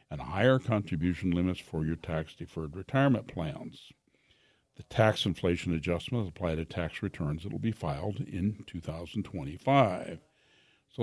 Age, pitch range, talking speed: 60-79, 85-110 Hz, 135 wpm